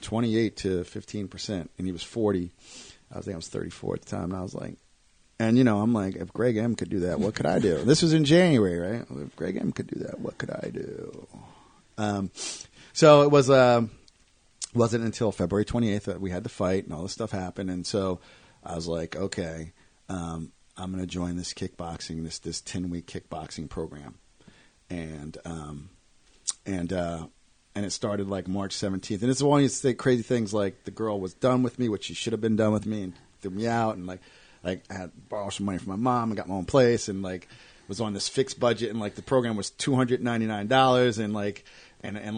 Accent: American